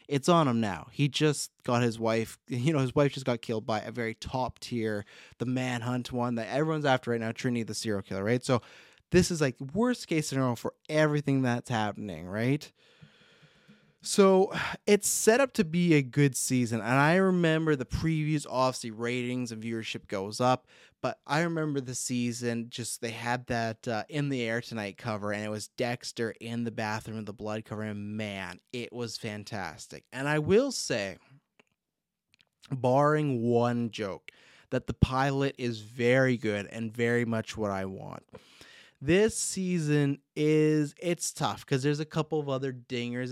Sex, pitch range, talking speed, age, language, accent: male, 115-155 Hz, 175 wpm, 20-39, English, American